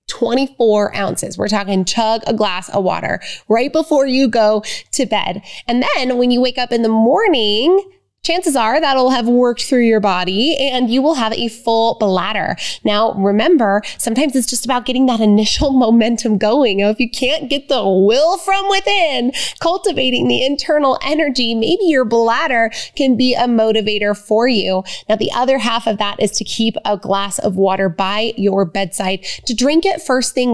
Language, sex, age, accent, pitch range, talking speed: English, female, 20-39, American, 215-270 Hz, 180 wpm